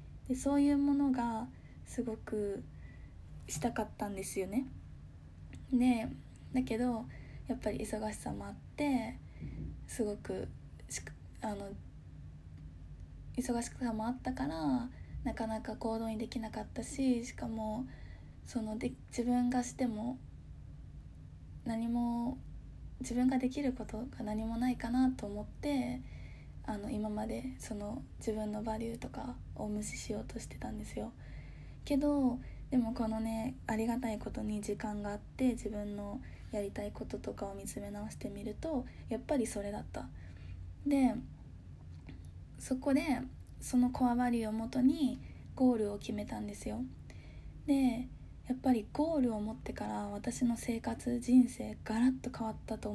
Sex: female